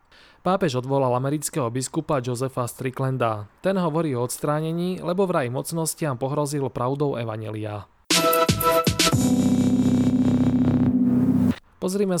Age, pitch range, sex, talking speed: 20-39, 125-160 Hz, male, 85 wpm